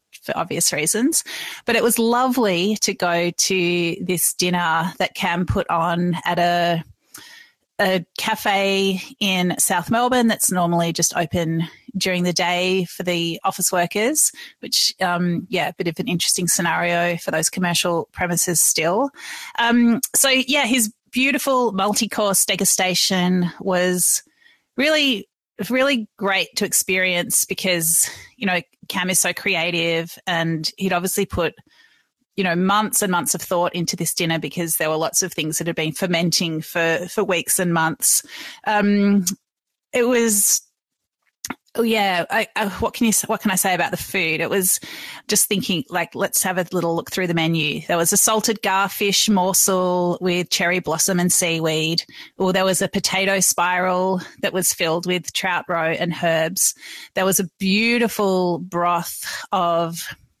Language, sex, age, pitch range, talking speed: English, female, 30-49, 175-210 Hz, 160 wpm